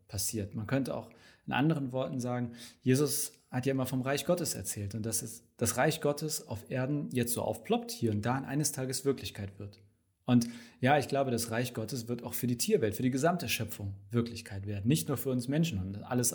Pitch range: 110-135 Hz